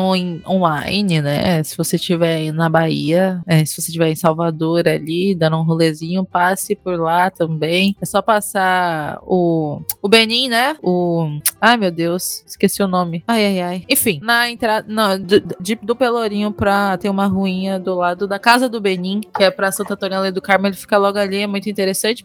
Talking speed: 180 wpm